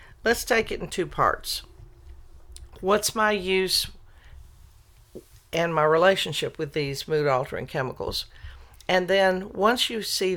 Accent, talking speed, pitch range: American, 125 wpm, 140-190 Hz